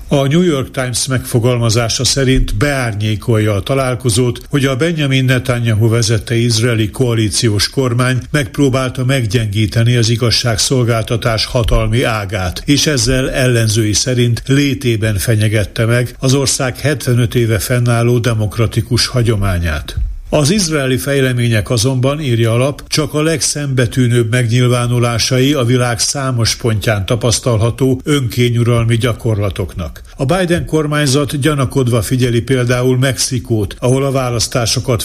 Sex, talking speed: male, 110 wpm